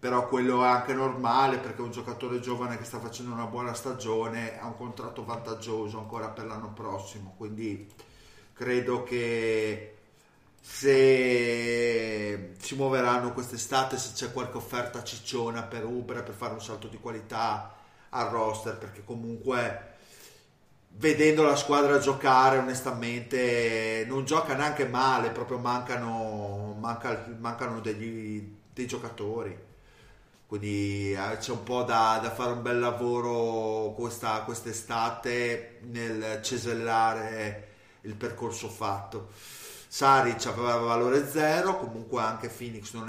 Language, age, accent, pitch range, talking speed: Italian, 30-49, native, 110-125 Hz, 120 wpm